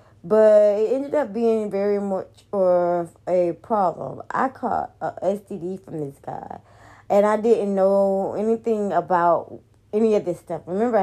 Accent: American